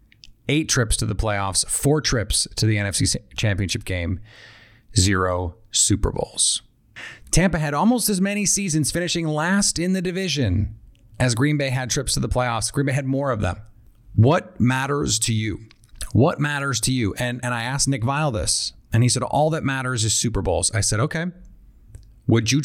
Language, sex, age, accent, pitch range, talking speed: English, male, 30-49, American, 110-140 Hz, 185 wpm